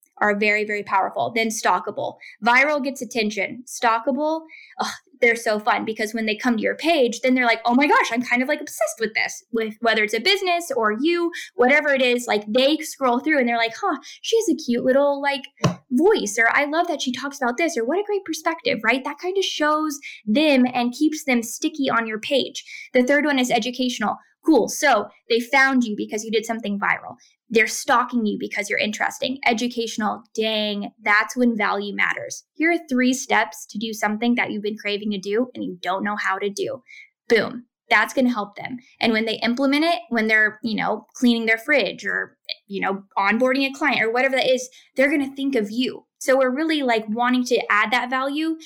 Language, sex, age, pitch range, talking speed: English, female, 10-29, 220-280 Hz, 215 wpm